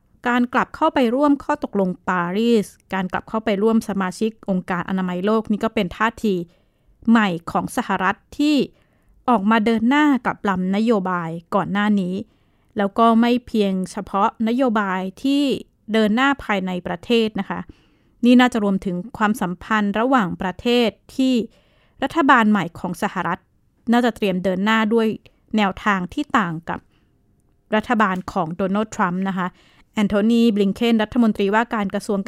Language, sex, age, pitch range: Thai, female, 20-39, 190-240 Hz